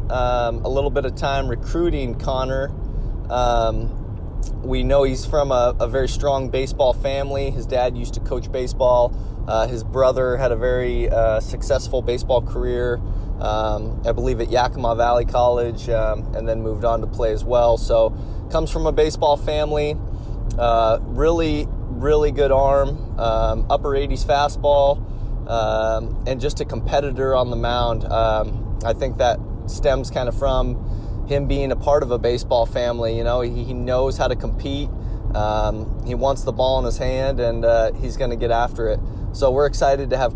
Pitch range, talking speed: 110-130 Hz, 175 wpm